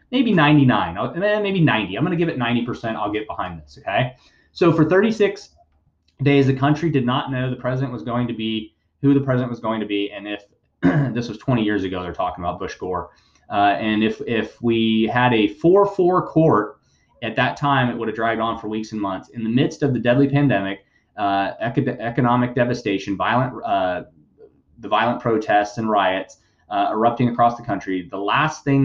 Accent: American